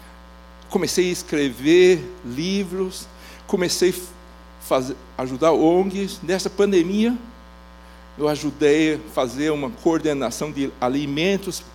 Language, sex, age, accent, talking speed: Portuguese, male, 60-79, Brazilian, 95 wpm